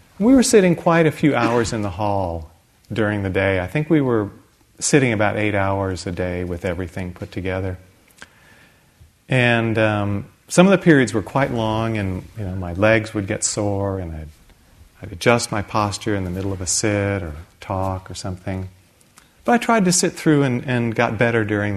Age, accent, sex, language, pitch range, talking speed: 40-59, American, male, English, 95-120 Hz, 195 wpm